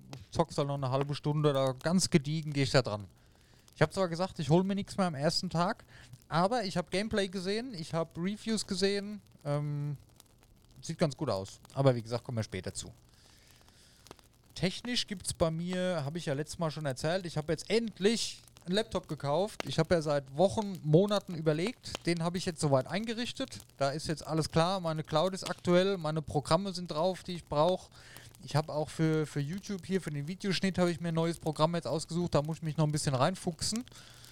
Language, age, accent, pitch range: German, 30-49, German, 130-170 Hz